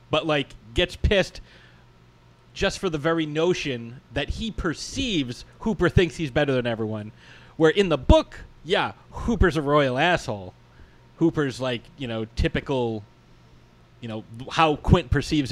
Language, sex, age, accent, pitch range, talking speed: English, male, 30-49, American, 120-155 Hz, 145 wpm